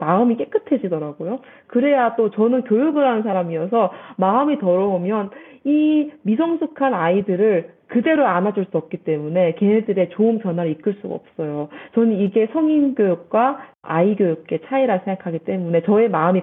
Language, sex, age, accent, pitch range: Korean, female, 40-59, native, 180-240 Hz